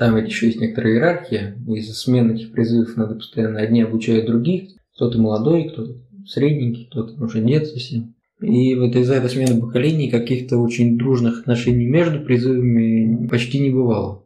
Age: 20-39